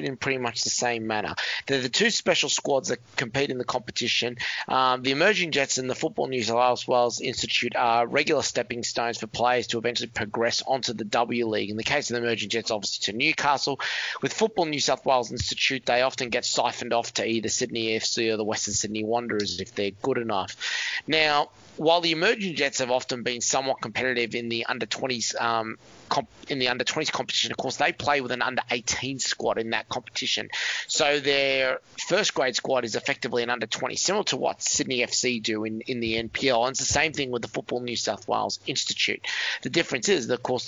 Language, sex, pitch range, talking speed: English, male, 115-135 Hz, 210 wpm